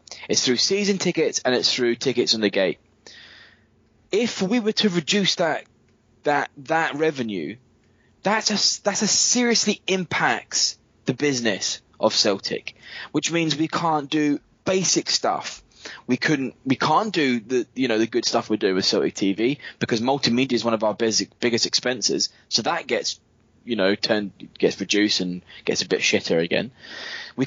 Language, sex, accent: English, male, British